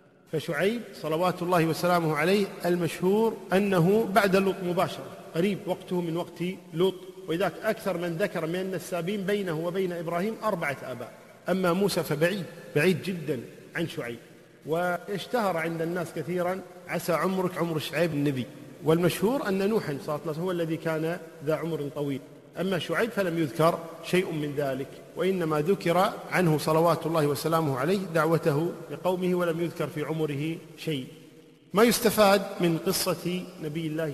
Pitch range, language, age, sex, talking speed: 155-185 Hz, Arabic, 40-59, male, 140 wpm